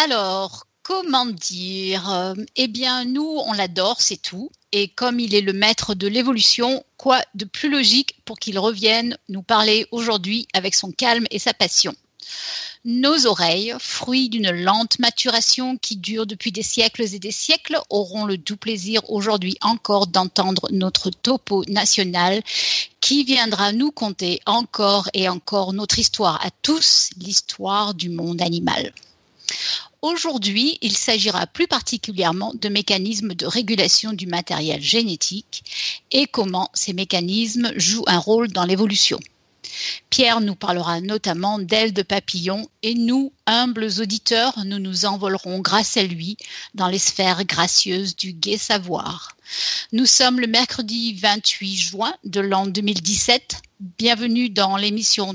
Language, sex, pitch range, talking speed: French, female, 195-235 Hz, 140 wpm